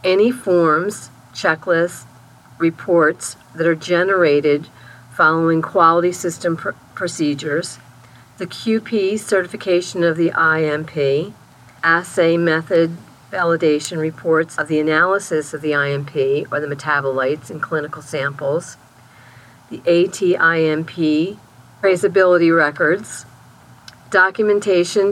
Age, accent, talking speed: 50-69, American, 95 wpm